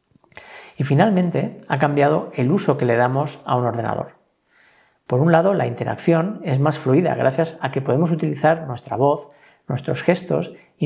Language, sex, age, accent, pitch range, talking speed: Spanish, male, 40-59, Spanish, 135-160 Hz, 165 wpm